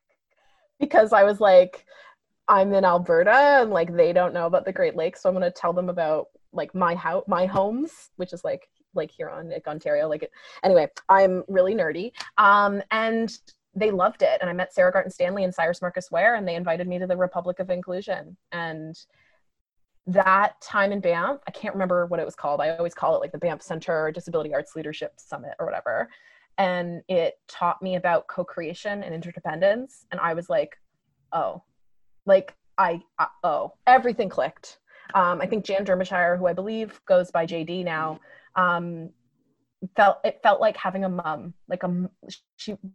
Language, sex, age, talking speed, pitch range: English, female, 20-39, 185 wpm, 175-225 Hz